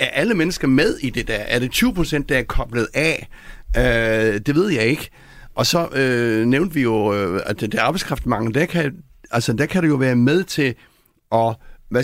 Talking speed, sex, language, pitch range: 205 wpm, male, Danish, 115-155 Hz